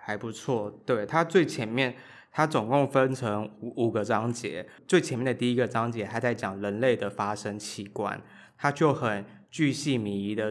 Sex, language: male, Chinese